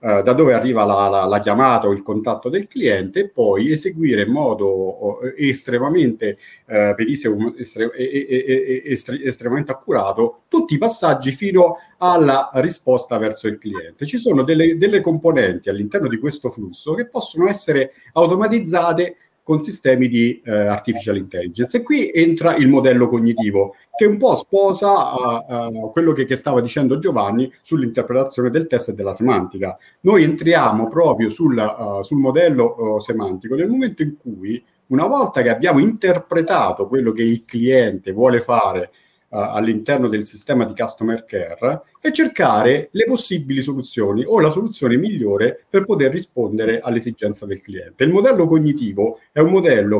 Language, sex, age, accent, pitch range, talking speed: Italian, male, 50-69, native, 110-165 Hz, 140 wpm